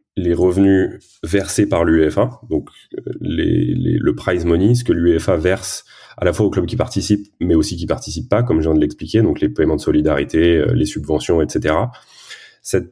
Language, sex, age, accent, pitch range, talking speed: French, male, 30-49, French, 85-110 Hz, 190 wpm